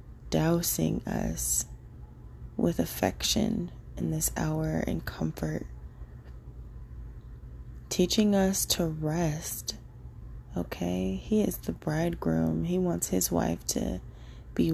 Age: 20-39